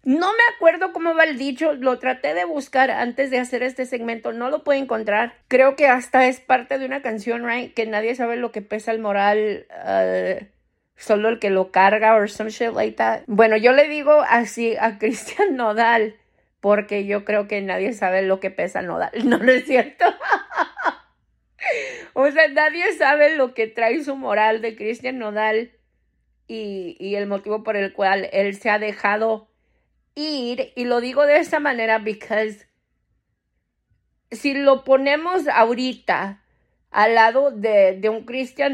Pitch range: 215-275 Hz